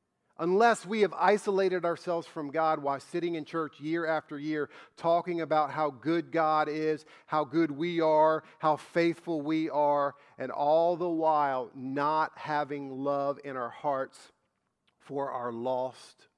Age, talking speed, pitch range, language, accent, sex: 50-69, 150 wpm, 130-160 Hz, English, American, male